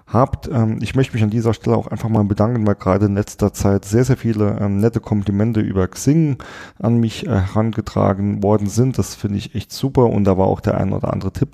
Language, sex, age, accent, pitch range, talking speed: German, male, 30-49, German, 95-110 Hz, 230 wpm